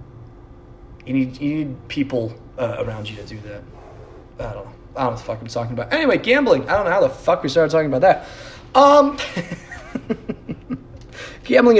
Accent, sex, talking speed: American, male, 195 wpm